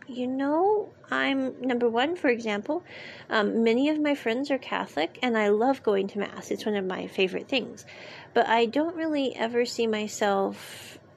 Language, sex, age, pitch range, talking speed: English, female, 40-59, 200-250 Hz, 175 wpm